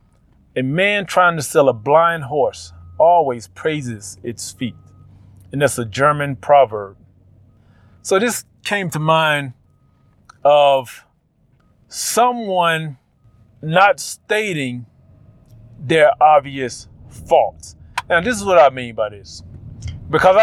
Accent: American